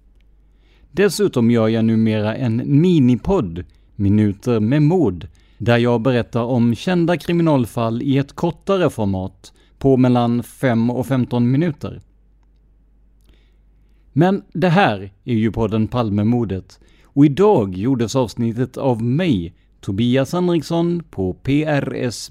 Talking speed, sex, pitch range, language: 115 wpm, male, 105-145 Hz, Swedish